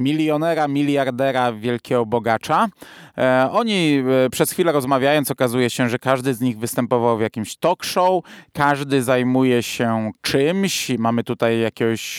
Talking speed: 130 wpm